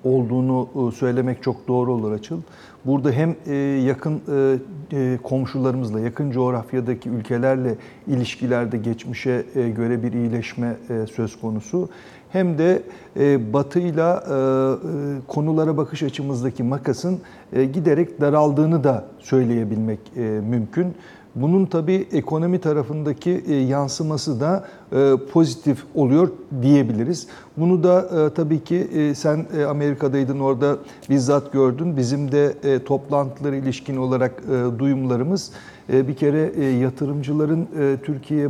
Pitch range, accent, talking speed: 130-155 Hz, native, 95 wpm